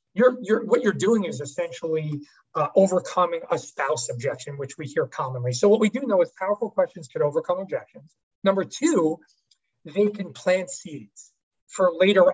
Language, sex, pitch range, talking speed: English, male, 180-280 Hz, 170 wpm